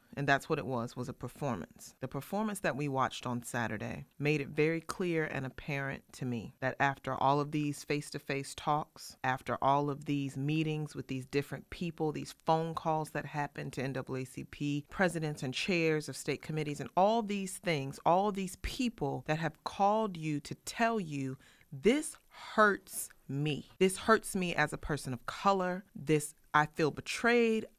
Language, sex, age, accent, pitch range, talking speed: English, female, 30-49, American, 140-185 Hz, 175 wpm